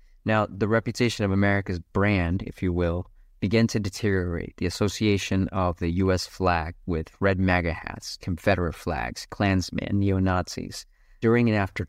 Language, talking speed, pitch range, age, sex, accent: English, 145 wpm, 90-110 Hz, 30-49, male, American